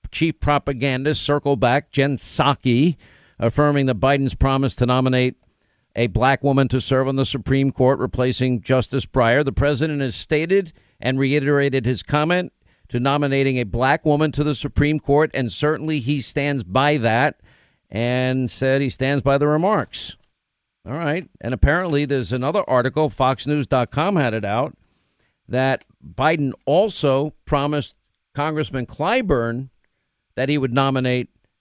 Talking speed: 140 wpm